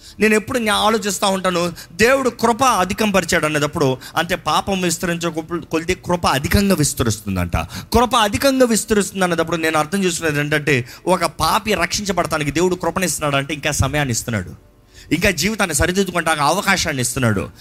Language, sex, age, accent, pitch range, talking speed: Telugu, male, 30-49, native, 140-210 Hz, 125 wpm